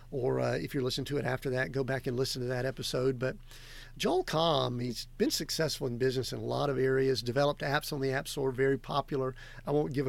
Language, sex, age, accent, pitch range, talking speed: English, male, 50-69, American, 130-145 Hz, 240 wpm